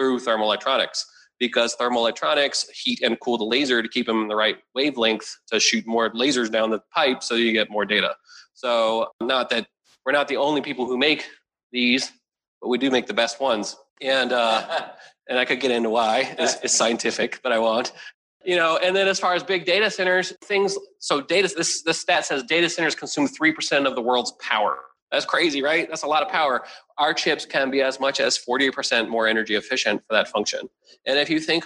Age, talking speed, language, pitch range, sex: 30-49, 215 wpm, English, 115-175 Hz, male